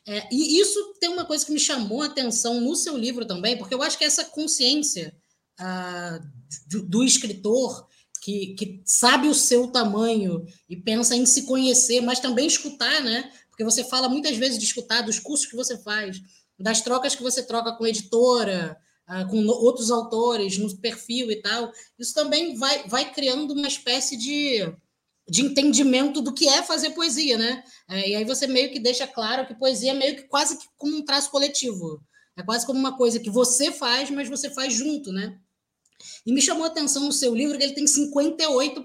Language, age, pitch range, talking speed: Portuguese, 20-39, 210-280 Hz, 200 wpm